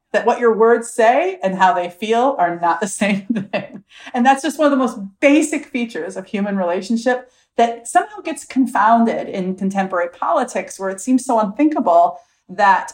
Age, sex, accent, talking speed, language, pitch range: 40-59, female, American, 180 wpm, English, 180-240 Hz